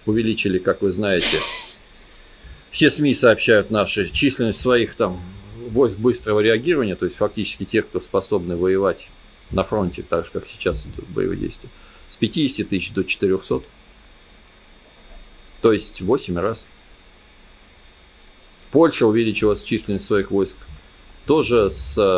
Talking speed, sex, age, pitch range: 120 wpm, male, 40-59, 95-110 Hz